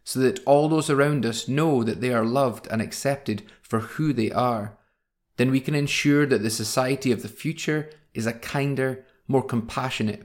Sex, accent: male, British